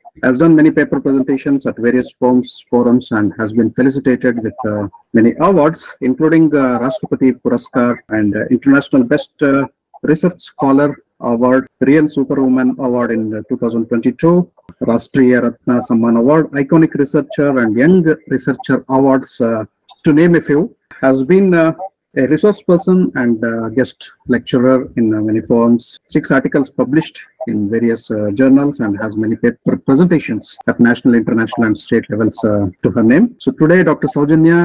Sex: male